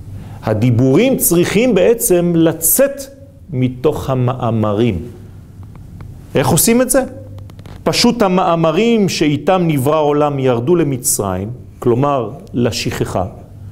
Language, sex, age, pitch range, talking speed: French, male, 40-59, 105-160 Hz, 85 wpm